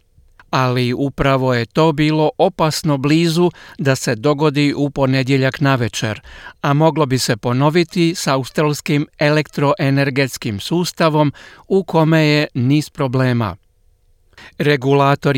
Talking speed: 115 wpm